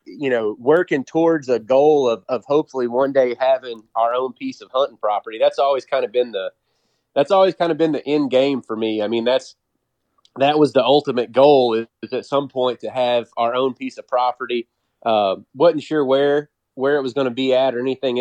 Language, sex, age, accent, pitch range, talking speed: English, male, 30-49, American, 115-145 Hz, 220 wpm